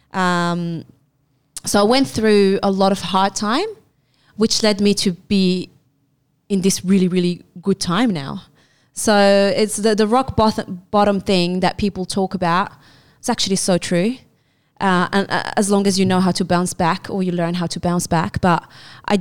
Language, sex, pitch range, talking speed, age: English, female, 175-205 Hz, 180 wpm, 20-39